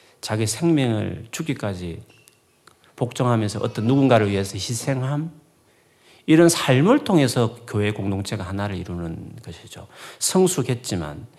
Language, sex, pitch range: Korean, male, 95-140 Hz